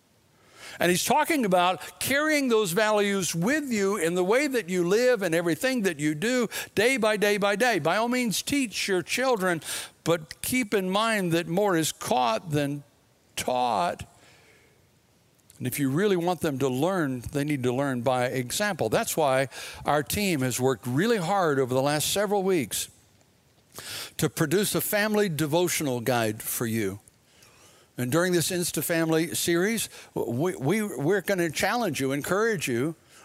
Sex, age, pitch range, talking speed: male, 60-79, 140-200 Hz, 165 wpm